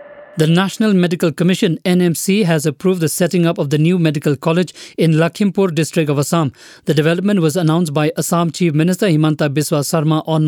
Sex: male